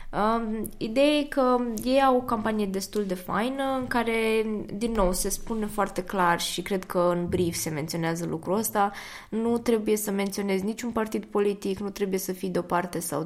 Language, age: Romanian, 20-39